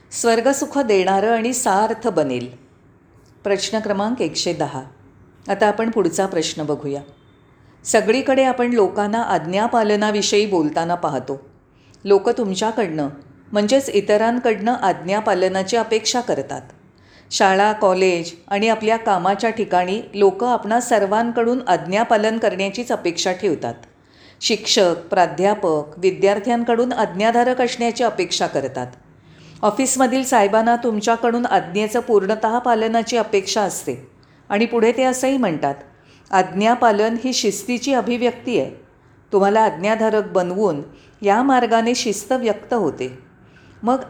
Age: 40-59